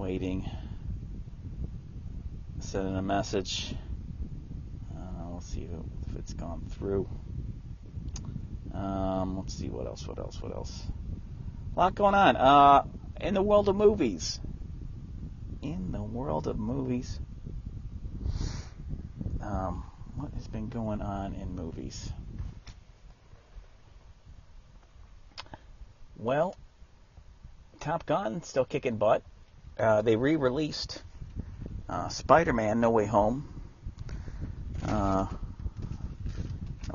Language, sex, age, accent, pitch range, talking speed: English, male, 30-49, American, 90-115 Hz, 95 wpm